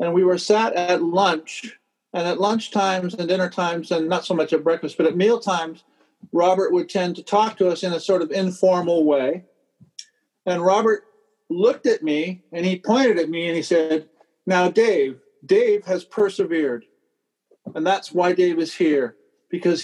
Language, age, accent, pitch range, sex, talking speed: English, 50-69, American, 165-205 Hz, male, 185 wpm